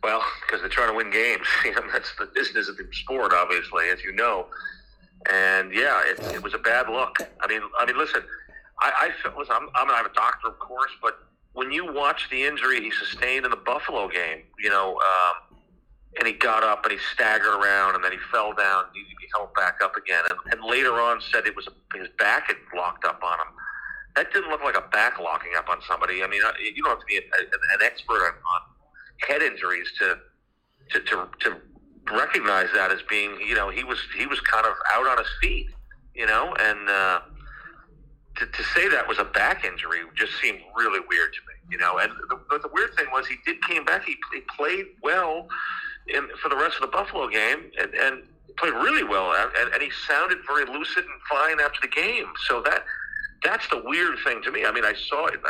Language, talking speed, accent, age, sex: English, 225 wpm, American, 40-59, male